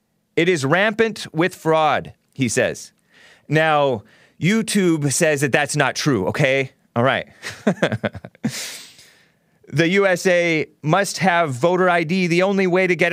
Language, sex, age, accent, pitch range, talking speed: English, male, 30-49, American, 115-175 Hz, 130 wpm